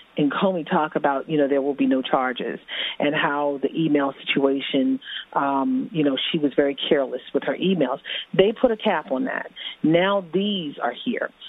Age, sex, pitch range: 40-59, female, 145-190 Hz